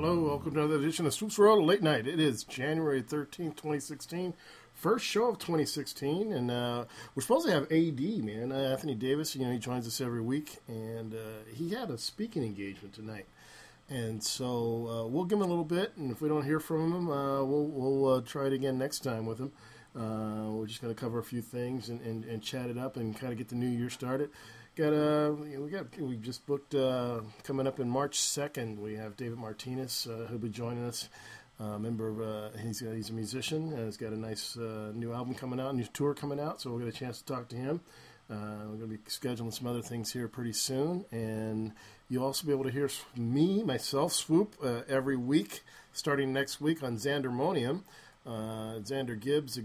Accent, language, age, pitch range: American, English, 40-59, 115-145 Hz